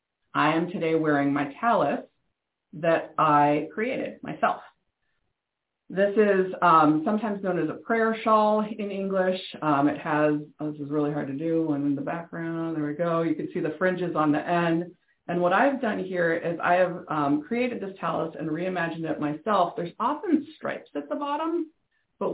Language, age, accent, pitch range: English, 40-59, American, 150-185 Hz